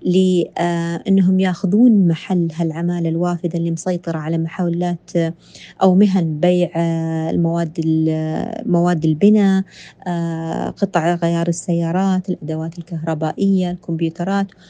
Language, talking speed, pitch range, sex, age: Arabic, 80 wpm, 170-195 Hz, female, 30-49